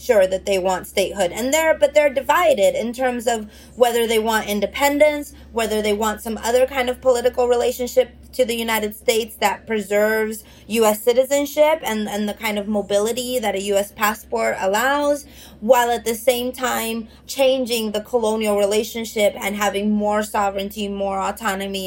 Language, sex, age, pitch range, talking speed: English, female, 20-39, 200-250 Hz, 160 wpm